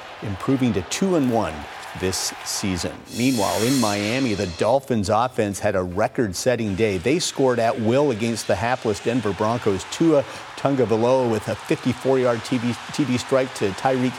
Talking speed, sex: 155 wpm, male